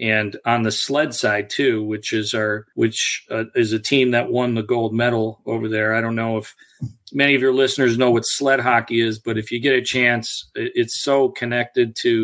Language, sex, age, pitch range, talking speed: English, male, 40-59, 115-125 Hz, 215 wpm